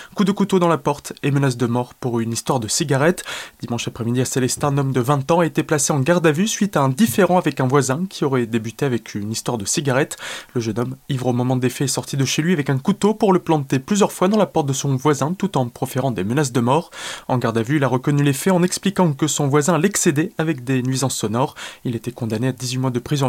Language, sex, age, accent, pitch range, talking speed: French, male, 20-39, French, 125-170 Hz, 275 wpm